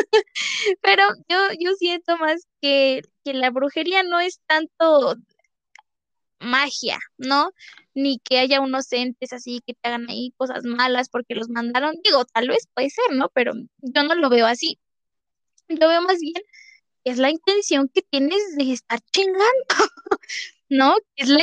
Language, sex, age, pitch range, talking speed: Spanish, female, 20-39, 260-345 Hz, 160 wpm